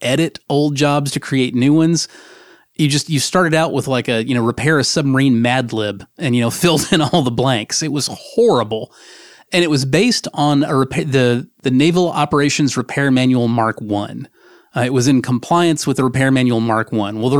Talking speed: 205 wpm